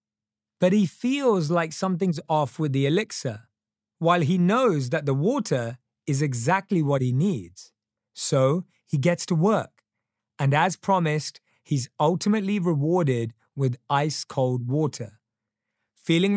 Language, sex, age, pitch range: English, male, 30-49, 120-180 Hz